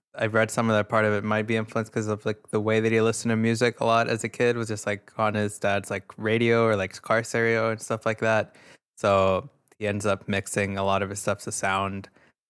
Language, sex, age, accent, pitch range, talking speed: English, male, 20-39, American, 100-115 Hz, 260 wpm